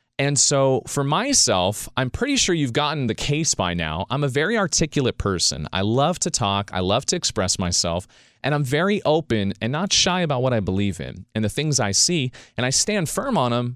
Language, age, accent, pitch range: English, 30-49, American, 100-155 Hz